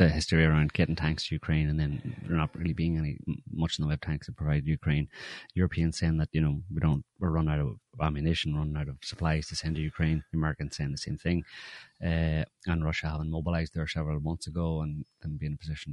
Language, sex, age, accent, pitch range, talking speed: English, male, 30-49, Irish, 75-100 Hz, 235 wpm